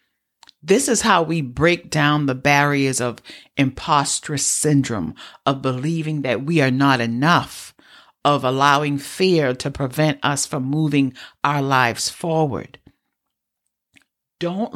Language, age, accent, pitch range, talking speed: English, 50-69, American, 130-165 Hz, 120 wpm